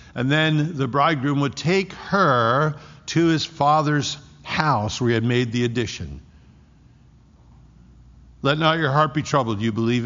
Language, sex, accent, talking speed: English, male, American, 150 wpm